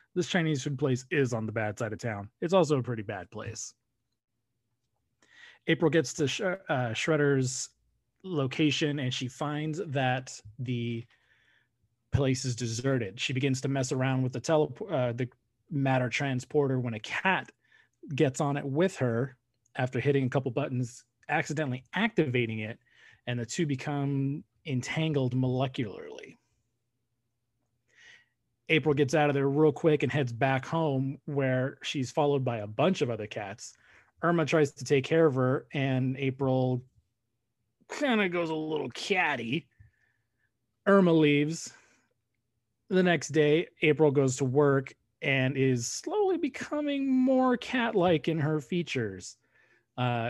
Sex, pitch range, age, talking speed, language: male, 120-150 Hz, 30-49, 140 wpm, English